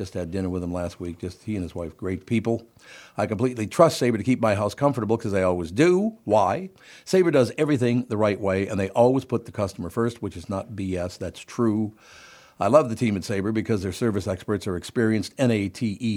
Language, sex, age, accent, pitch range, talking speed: English, male, 60-79, American, 100-130 Hz, 225 wpm